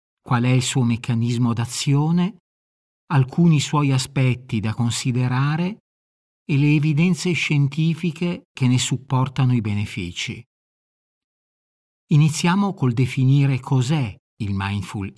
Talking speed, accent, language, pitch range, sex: 105 wpm, native, Italian, 110-145 Hz, male